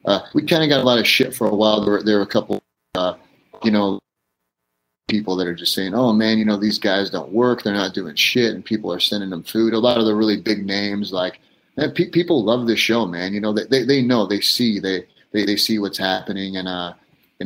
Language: English